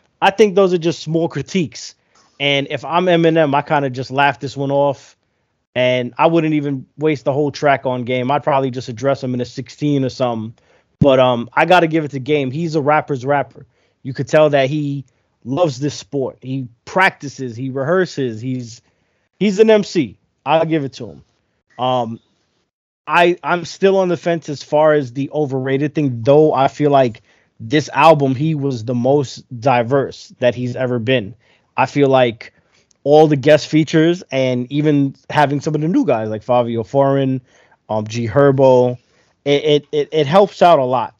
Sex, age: male, 20-39